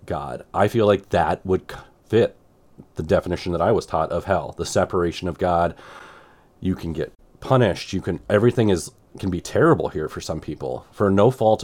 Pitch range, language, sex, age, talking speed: 85-105 Hz, English, male, 30-49, 190 wpm